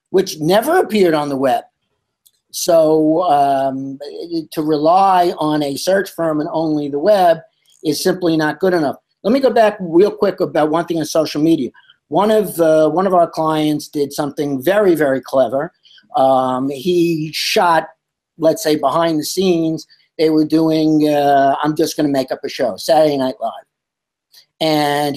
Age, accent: 50-69, American